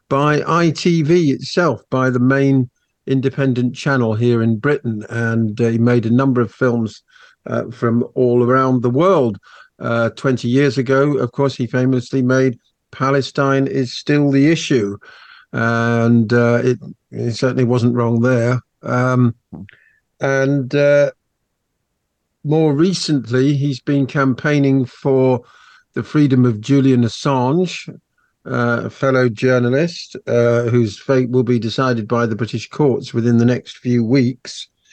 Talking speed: 135 wpm